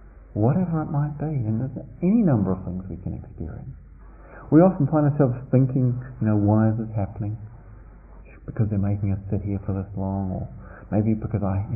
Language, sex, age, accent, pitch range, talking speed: English, male, 40-59, British, 100-125 Hz, 195 wpm